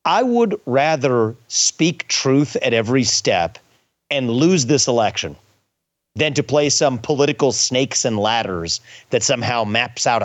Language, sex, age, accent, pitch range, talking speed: English, male, 40-59, American, 120-155 Hz, 140 wpm